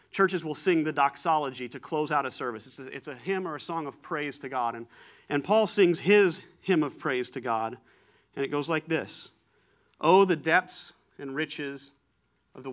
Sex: male